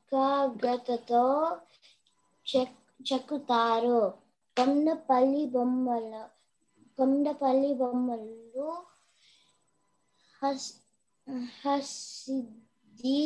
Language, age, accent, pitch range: Telugu, 20-39, native, 240-275 Hz